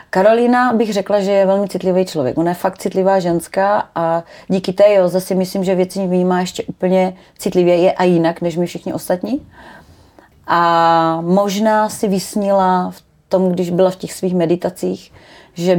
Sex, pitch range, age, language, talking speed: female, 170-190 Hz, 30-49, Czech, 165 wpm